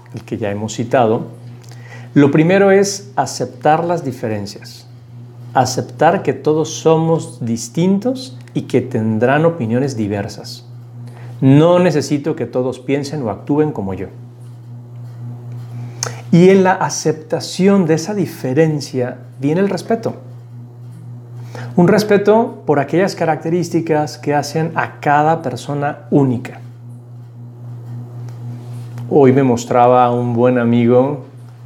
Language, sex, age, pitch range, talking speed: Spanish, male, 40-59, 120-155 Hz, 110 wpm